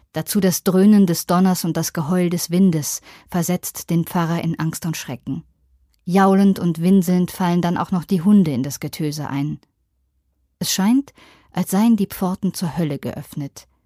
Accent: German